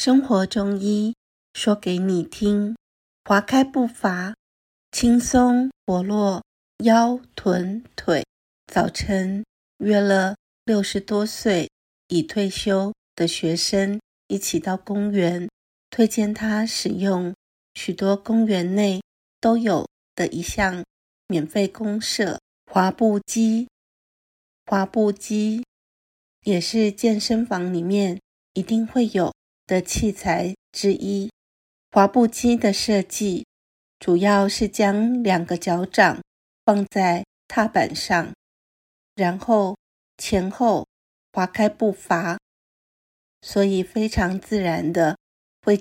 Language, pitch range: Chinese, 185-220 Hz